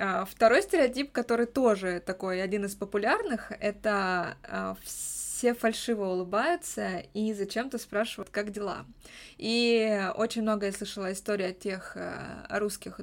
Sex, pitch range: female, 190-225 Hz